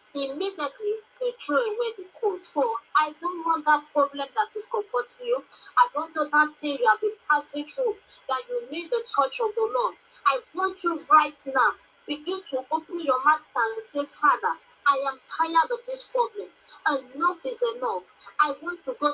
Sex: female